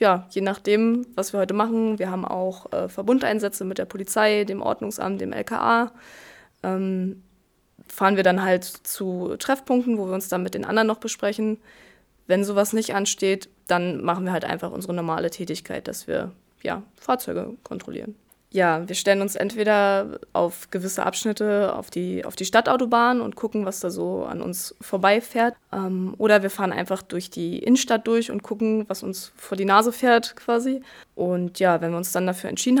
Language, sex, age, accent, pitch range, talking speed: German, female, 20-39, German, 185-225 Hz, 175 wpm